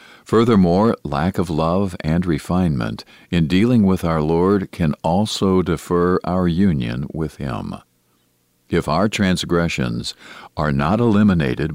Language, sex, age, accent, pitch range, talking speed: English, male, 50-69, American, 75-95 Hz, 125 wpm